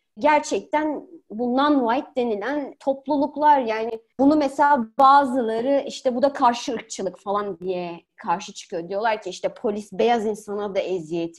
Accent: native